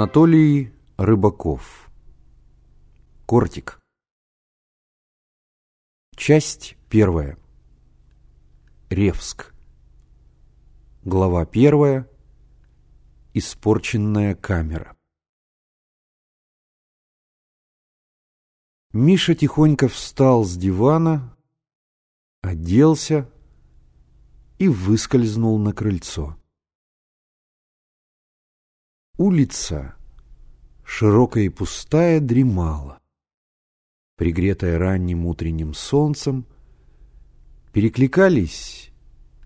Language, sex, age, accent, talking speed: Russian, male, 50-69, native, 45 wpm